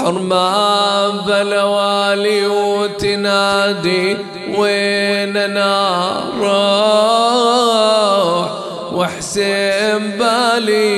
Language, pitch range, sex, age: English, 210-245 Hz, male, 30-49